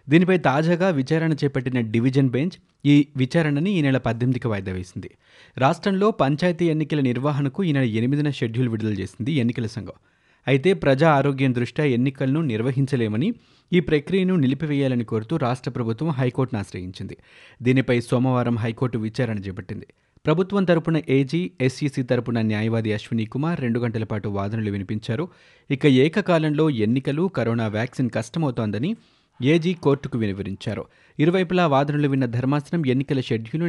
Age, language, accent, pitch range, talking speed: 30-49, Telugu, native, 115-155 Hz, 125 wpm